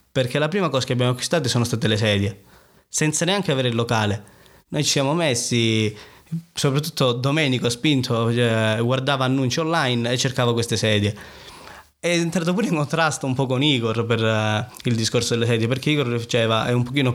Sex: male